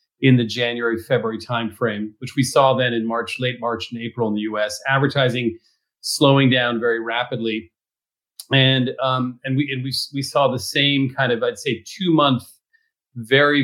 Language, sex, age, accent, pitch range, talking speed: English, male, 40-59, American, 115-135 Hz, 175 wpm